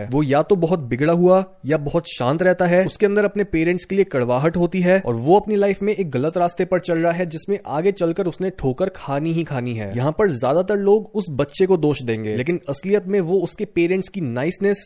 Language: Hindi